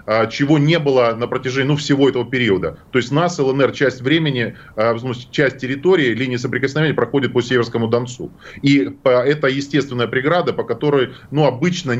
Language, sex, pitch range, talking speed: Russian, male, 125-150 Hz, 155 wpm